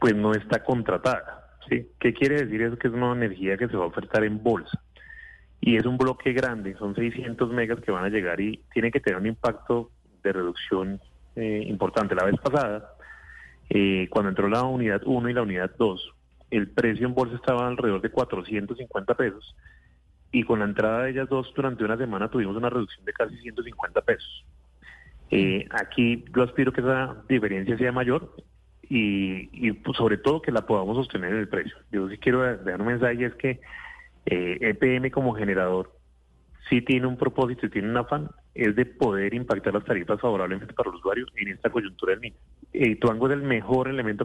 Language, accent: Spanish, Colombian